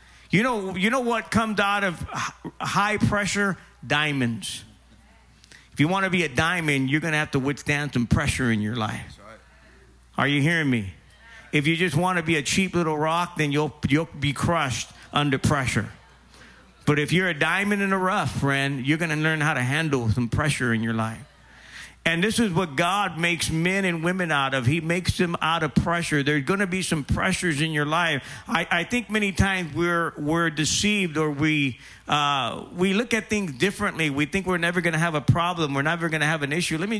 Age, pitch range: 50-69, 150-195 Hz